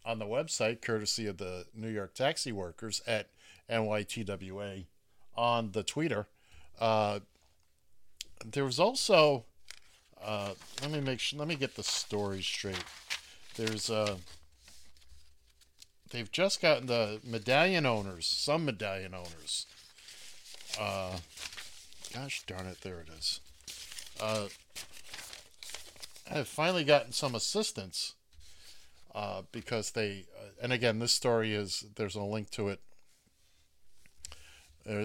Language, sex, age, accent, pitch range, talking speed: English, male, 50-69, American, 85-115 Hz, 120 wpm